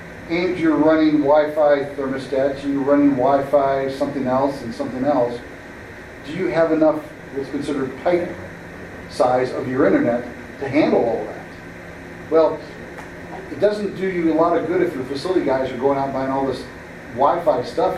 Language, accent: English, American